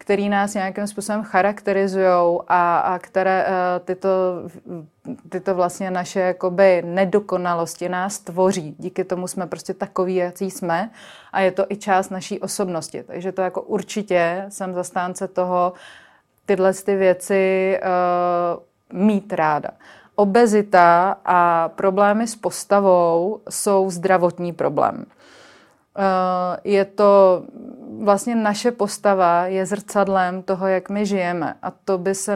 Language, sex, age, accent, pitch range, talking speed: Czech, female, 30-49, native, 185-200 Hz, 115 wpm